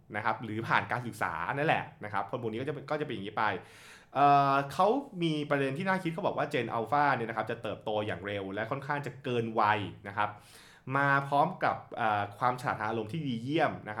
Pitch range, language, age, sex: 105-135 Hz, Thai, 20-39, male